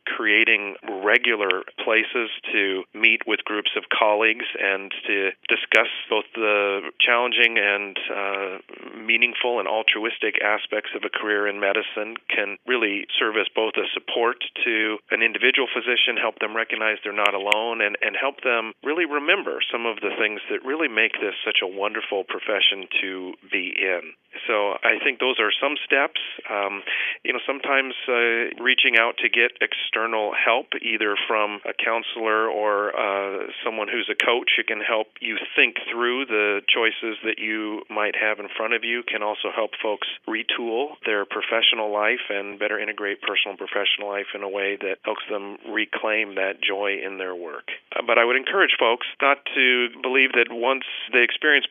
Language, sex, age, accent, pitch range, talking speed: English, male, 40-59, American, 100-115 Hz, 175 wpm